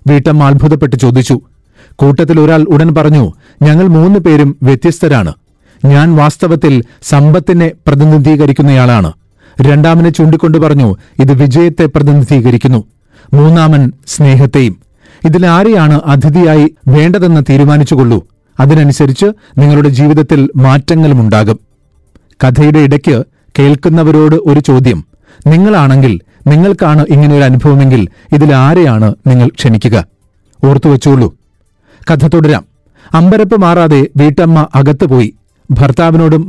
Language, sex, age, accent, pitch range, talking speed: Malayalam, male, 40-59, native, 130-160 Hz, 80 wpm